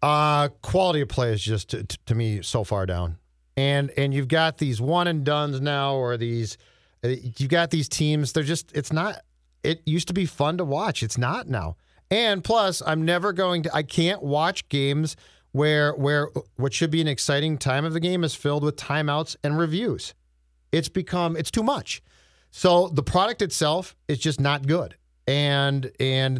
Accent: American